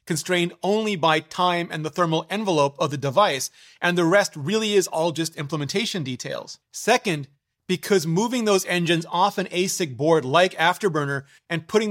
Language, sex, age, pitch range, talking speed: English, male, 30-49, 155-195 Hz, 165 wpm